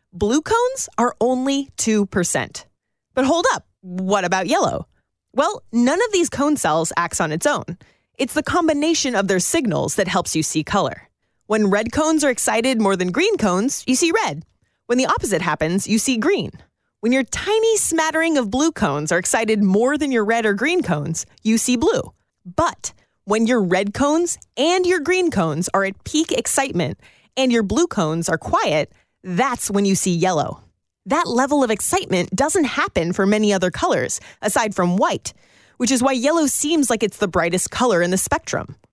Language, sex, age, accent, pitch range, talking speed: English, female, 30-49, American, 190-290 Hz, 185 wpm